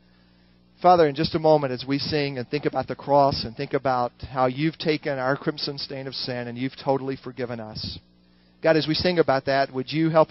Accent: American